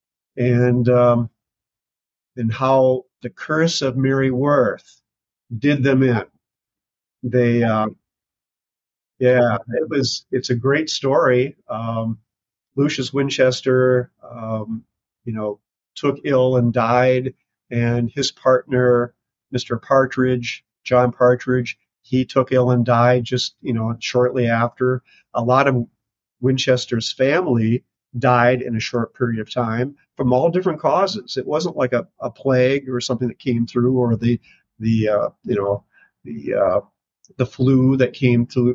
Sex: male